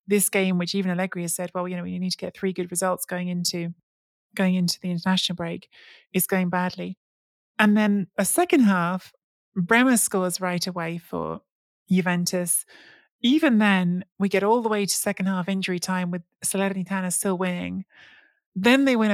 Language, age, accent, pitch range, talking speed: English, 20-39, British, 180-215 Hz, 180 wpm